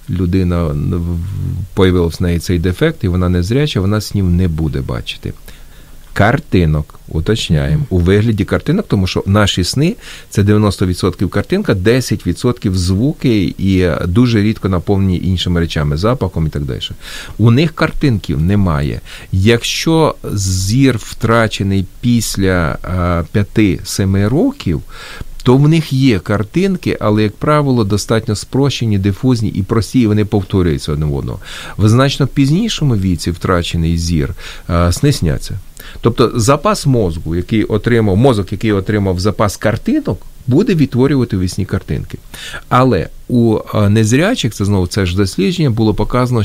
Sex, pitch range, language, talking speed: male, 90-120 Hz, Ukrainian, 130 wpm